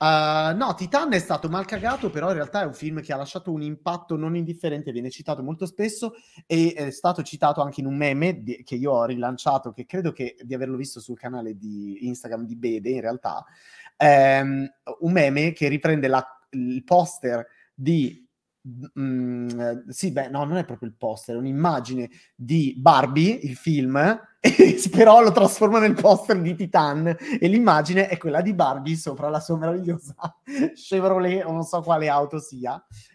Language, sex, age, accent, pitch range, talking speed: Italian, male, 30-49, native, 135-175 Hz, 170 wpm